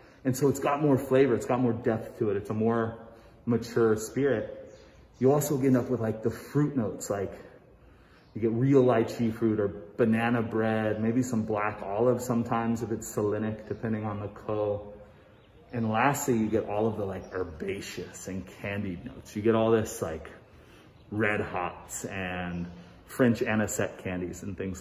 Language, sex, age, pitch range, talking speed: English, male, 30-49, 105-125 Hz, 175 wpm